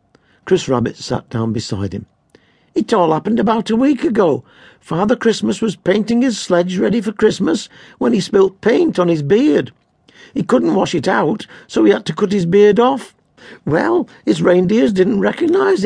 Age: 60-79